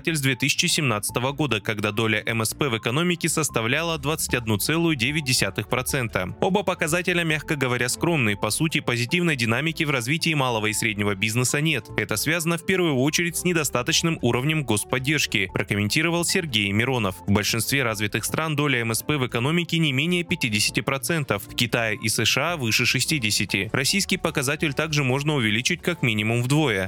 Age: 20-39